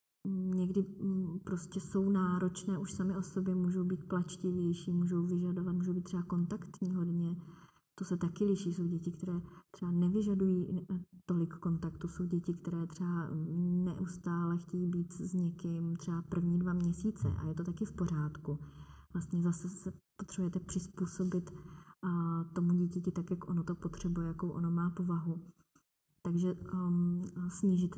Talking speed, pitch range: 140 wpm, 170-180 Hz